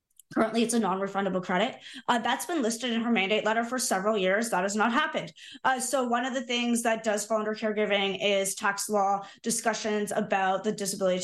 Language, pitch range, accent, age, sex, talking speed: English, 195-230 Hz, American, 20-39, female, 205 wpm